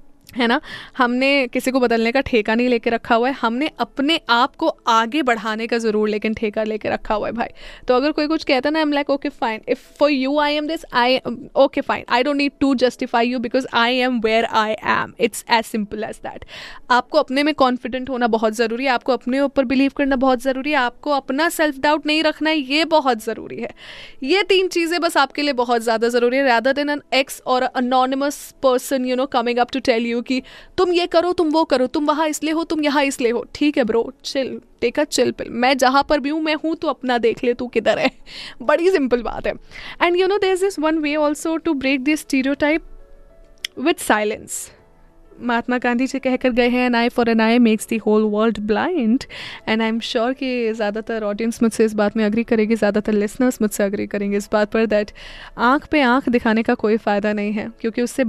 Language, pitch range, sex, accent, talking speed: Hindi, 230-290 Hz, female, native, 220 wpm